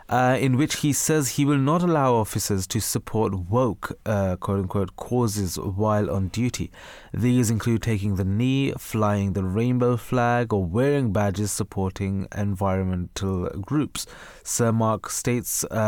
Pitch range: 100-125 Hz